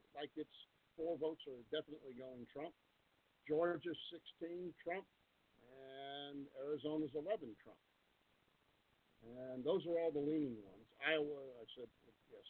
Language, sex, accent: English, male, American